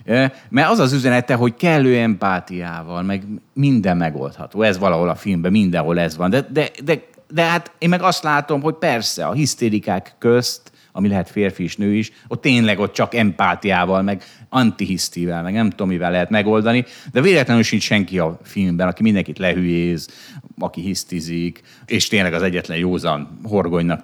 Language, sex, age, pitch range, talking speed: Hungarian, male, 30-49, 90-130 Hz, 160 wpm